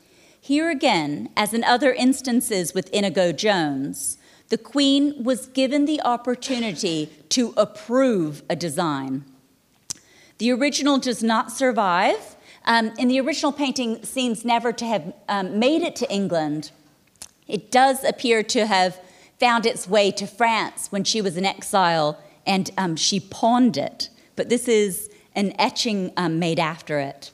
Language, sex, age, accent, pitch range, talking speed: English, female, 40-59, American, 180-250 Hz, 145 wpm